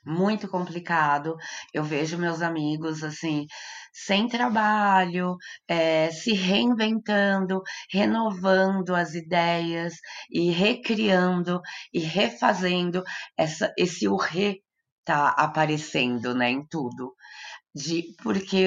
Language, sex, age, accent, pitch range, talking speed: Portuguese, female, 20-39, Brazilian, 160-210 Hz, 95 wpm